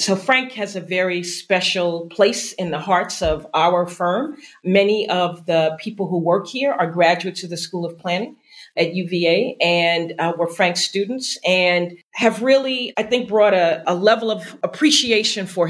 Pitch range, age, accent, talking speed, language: 175-230 Hz, 40-59, American, 175 wpm, English